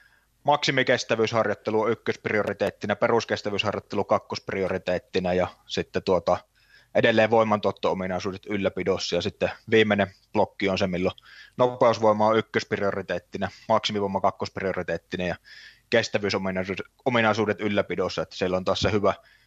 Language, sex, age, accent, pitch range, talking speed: Finnish, male, 20-39, native, 100-120 Hz, 100 wpm